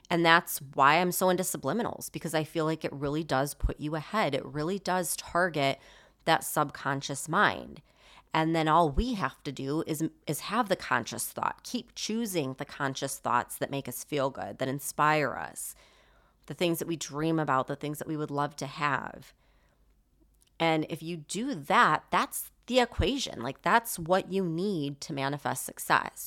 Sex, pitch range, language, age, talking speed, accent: female, 145-185 Hz, English, 30-49, 185 wpm, American